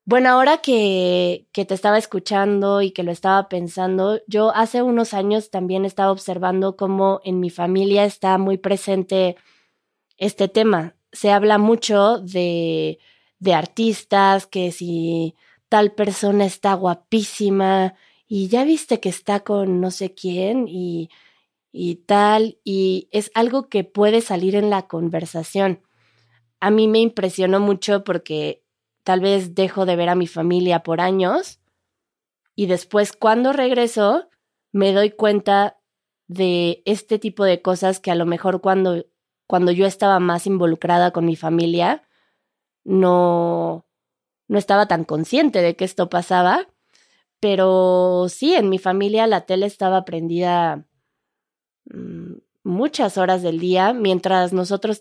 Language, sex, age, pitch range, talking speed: Spanish, female, 20-39, 180-205 Hz, 135 wpm